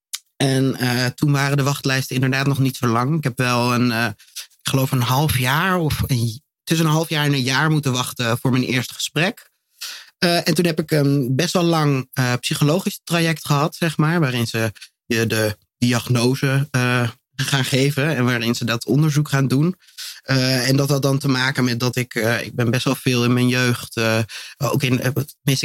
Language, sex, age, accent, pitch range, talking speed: Dutch, male, 30-49, Dutch, 120-145 Hz, 205 wpm